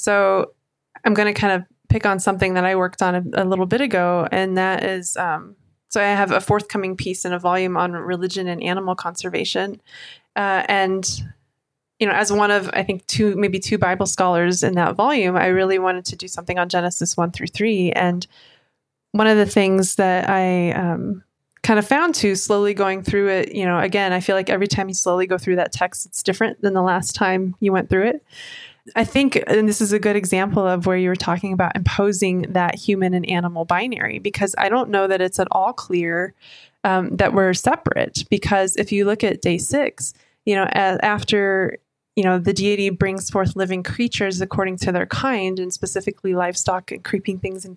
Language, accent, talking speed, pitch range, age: English, American, 210 wpm, 180-205 Hz, 20-39